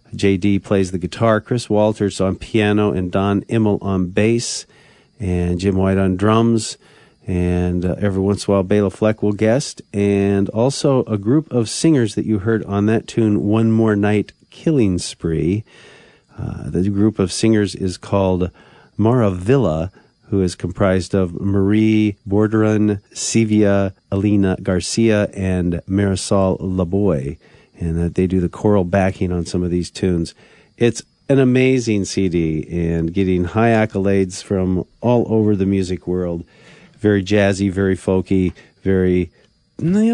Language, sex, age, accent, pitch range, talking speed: English, male, 40-59, American, 95-110 Hz, 145 wpm